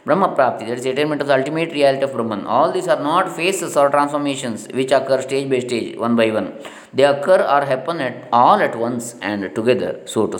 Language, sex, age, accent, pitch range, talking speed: English, male, 20-39, Indian, 120-150 Hz, 220 wpm